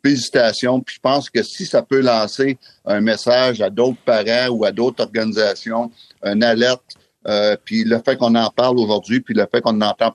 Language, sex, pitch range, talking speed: French, male, 110-140 Hz, 195 wpm